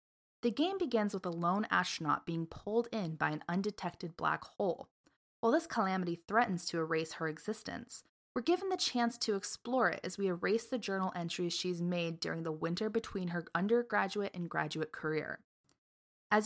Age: 20-39